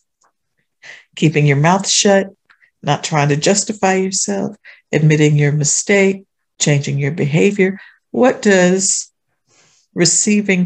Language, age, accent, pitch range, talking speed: English, 60-79, American, 160-195 Hz, 100 wpm